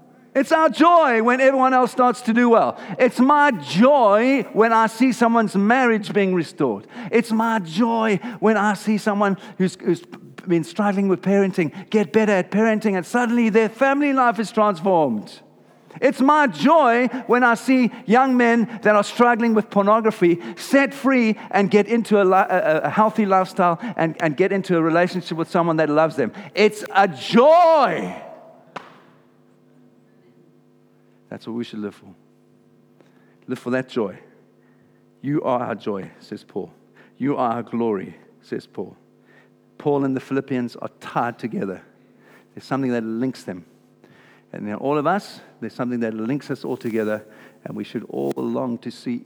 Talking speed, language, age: 165 wpm, English, 50-69